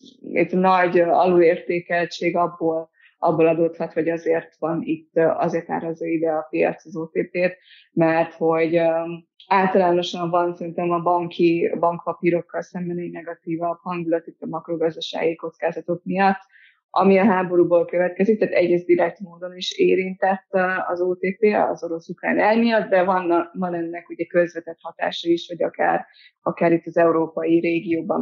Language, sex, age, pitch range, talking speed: Hungarian, female, 20-39, 165-180 Hz, 140 wpm